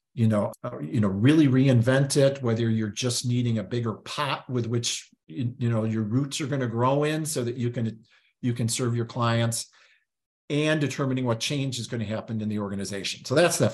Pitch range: 115-135 Hz